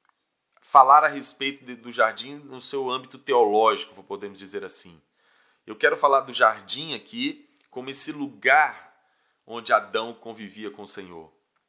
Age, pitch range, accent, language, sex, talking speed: 20-39, 100-130 Hz, Brazilian, Portuguese, male, 145 wpm